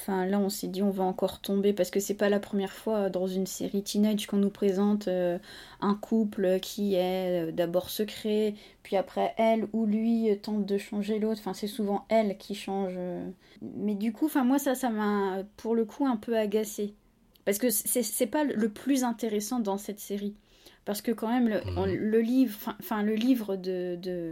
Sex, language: female, French